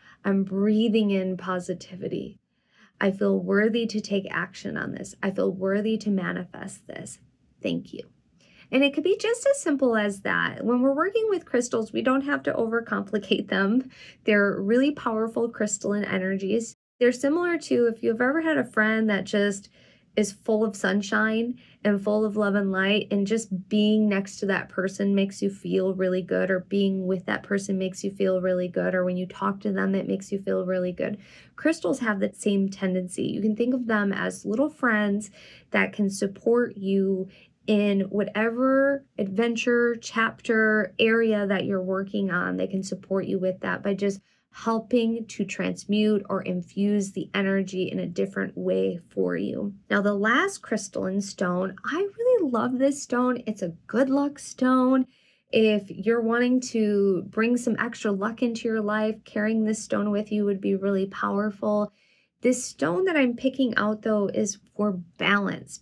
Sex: female